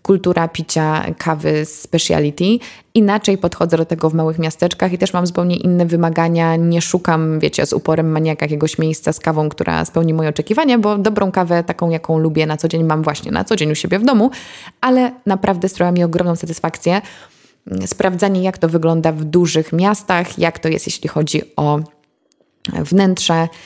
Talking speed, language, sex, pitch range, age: 170 wpm, Polish, female, 155-190 Hz, 20-39